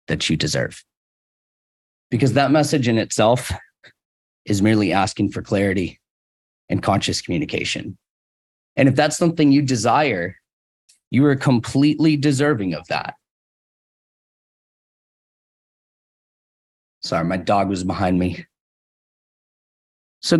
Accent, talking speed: American, 105 wpm